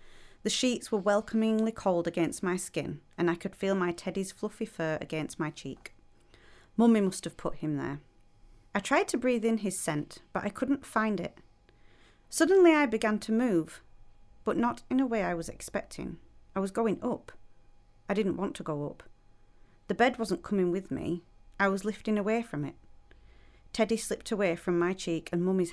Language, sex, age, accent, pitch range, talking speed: English, female, 30-49, British, 165-215 Hz, 185 wpm